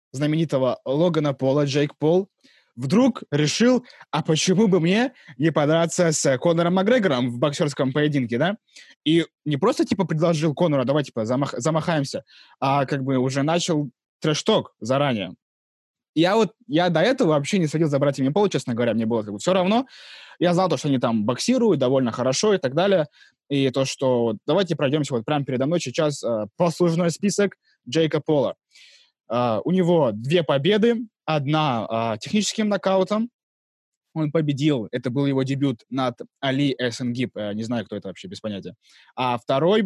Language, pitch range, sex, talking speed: Russian, 130-175 Hz, male, 165 wpm